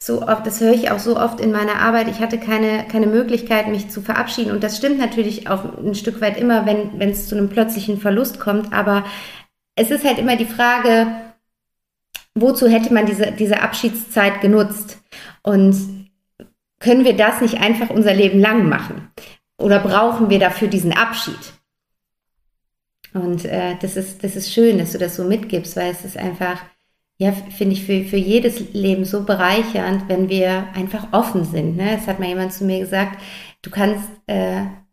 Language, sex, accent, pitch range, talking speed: German, female, German, 195-225 Hz, 180 wpm